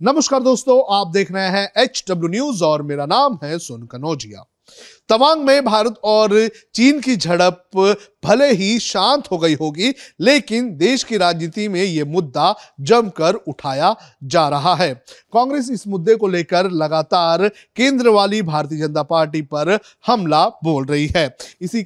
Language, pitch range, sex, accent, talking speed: Hindi, 165-230 Hz, male, native, 145 wpm